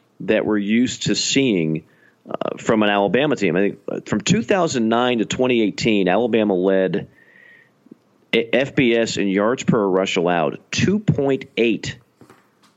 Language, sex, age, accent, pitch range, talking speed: English, male, 40-59, American, 100-135 Hz, 115 wpm